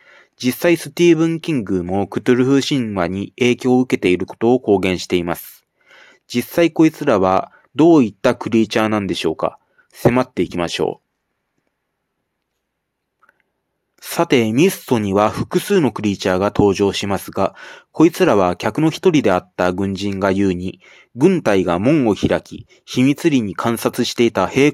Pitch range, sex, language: 100-145 Hz, male, Japanese